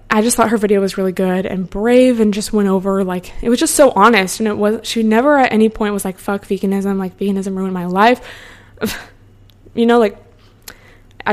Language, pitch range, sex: English, 185-225 Hz, female